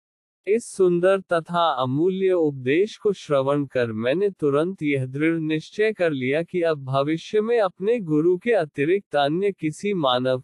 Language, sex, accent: Hindi, male, native